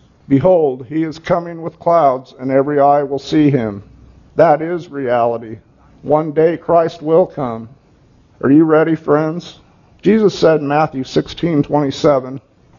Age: 50-69